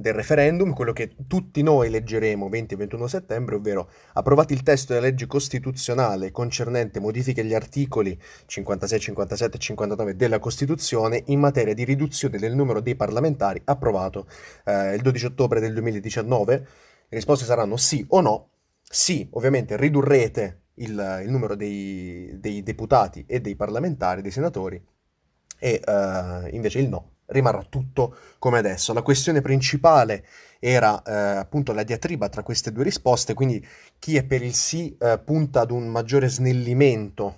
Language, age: Italian, 30-49